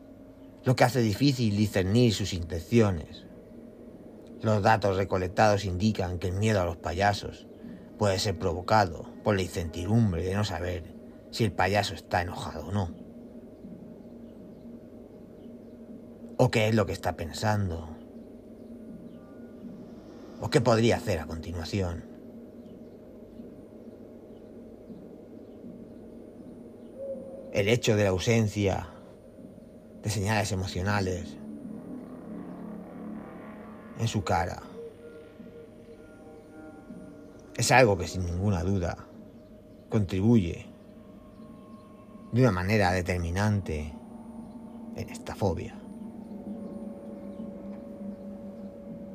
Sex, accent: male, Spanish